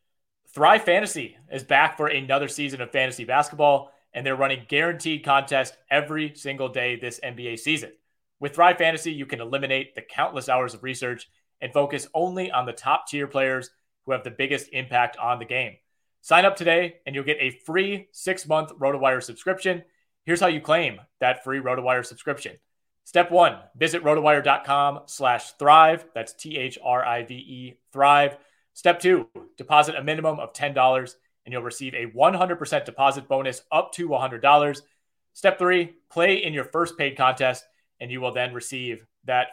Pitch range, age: 125-150 Hz, 30-49